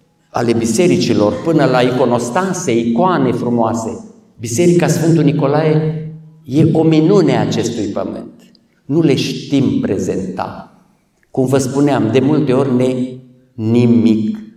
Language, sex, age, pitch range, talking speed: Romanian, male, 50-69, 115-155 Hz, 115 wpm